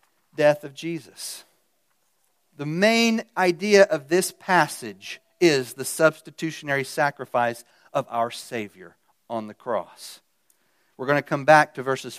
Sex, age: male, 40-59